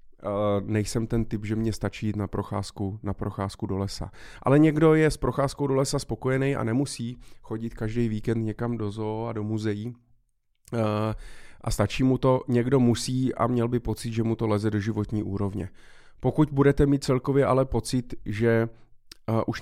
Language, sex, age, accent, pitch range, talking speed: Czech, male, 30-49, native, 110-130 Hz, 170 wpm